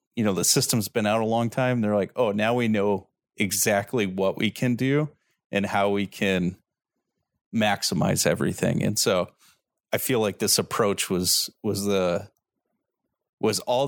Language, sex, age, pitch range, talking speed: English, male, 30-49, 100-110 Hz, 165 wpm